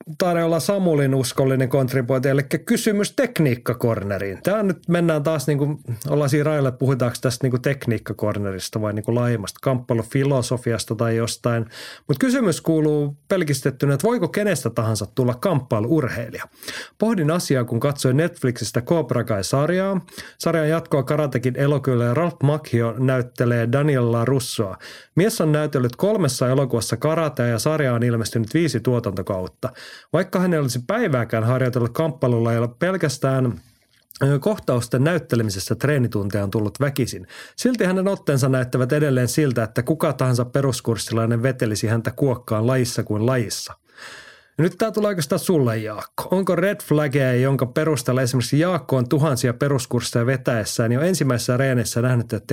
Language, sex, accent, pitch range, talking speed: Finnish, male, native, 120-155 Hz, 135 wpm